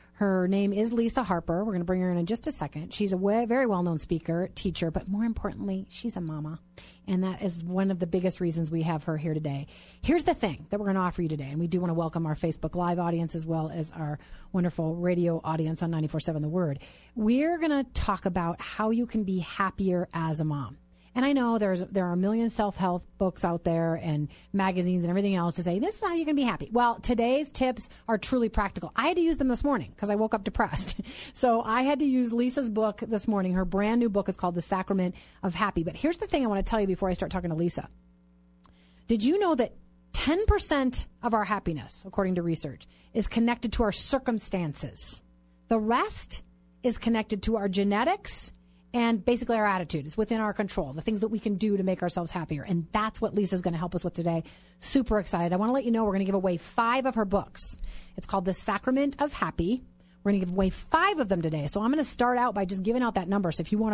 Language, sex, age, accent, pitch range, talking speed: English, female, 30-49, American, 170-225 Hz, 245 wpm